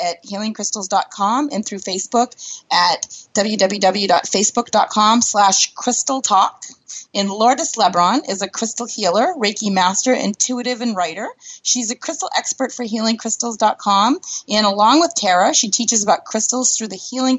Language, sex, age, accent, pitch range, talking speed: English, female, 30-49, American, 200-250 Hz, 130 wpm